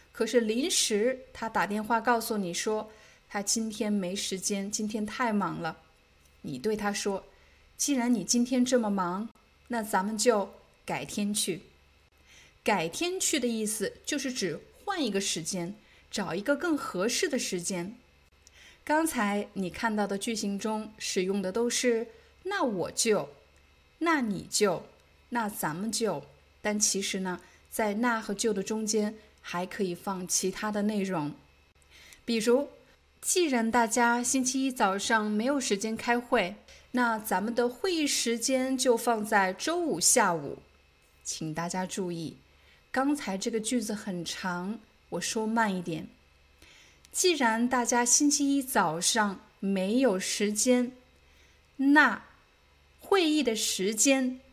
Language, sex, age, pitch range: Chinese, female, 20-39, 190-245 Hz